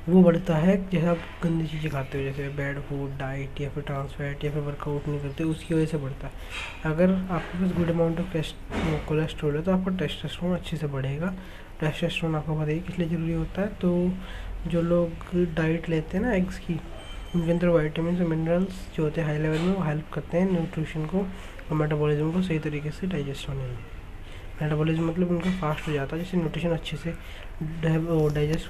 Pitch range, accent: 145-165 Hz, native